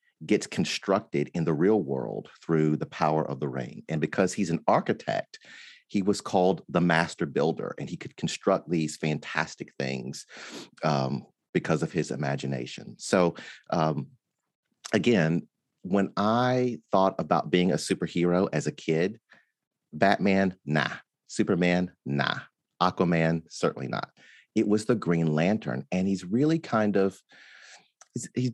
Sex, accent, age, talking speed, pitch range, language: male, American, 30-49, 140 wpm, 80-110 Hz, English